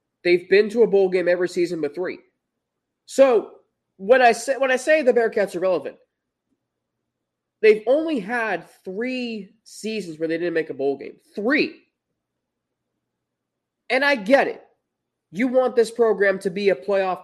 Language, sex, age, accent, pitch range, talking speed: English, male, 20-39, American, 160-235 Hz, 155 wpm